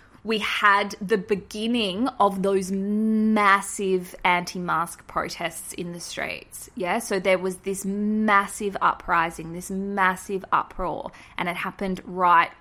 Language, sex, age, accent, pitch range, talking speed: English, female, 20-39, Australian, 175-210 Hz, 125 wpm